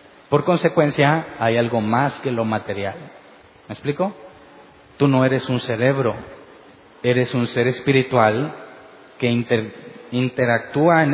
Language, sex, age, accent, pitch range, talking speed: Spanish, male, 30-49, Mexican, 115-145 Hz, 125 wpm